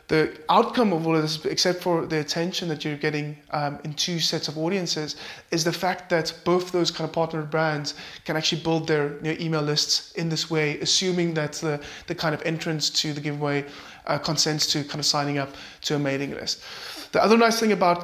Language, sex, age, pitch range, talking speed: English, male, 20-39, 155-175 Hz, 220 wpm